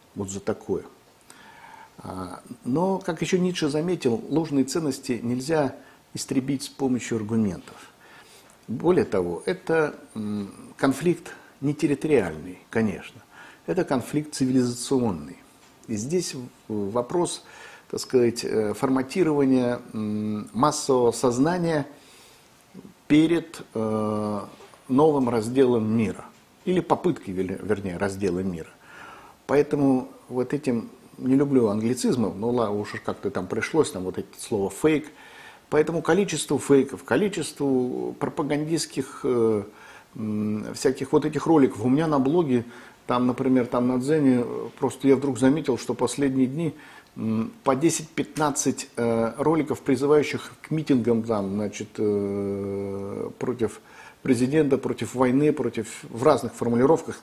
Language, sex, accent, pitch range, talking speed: Russian, male, native, 115-150 Hz, 105 wpm